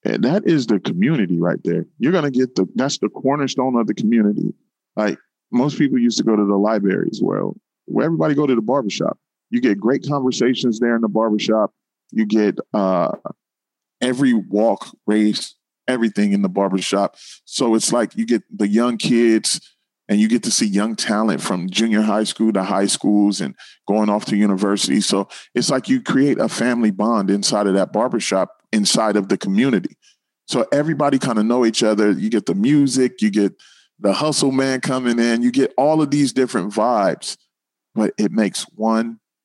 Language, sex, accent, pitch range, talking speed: English, male, American, 100-135 Hz, 190 wpm